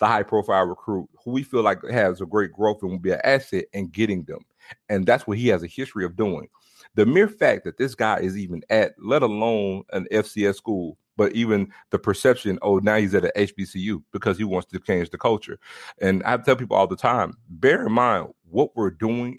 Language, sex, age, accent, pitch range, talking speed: English, male, 30-49, American, 100-115 Hz, 225 wpm